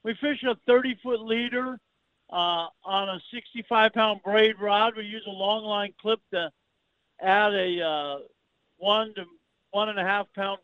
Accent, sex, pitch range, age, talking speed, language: American, male, 190-225 Hz, 50-69, 130 wpm, English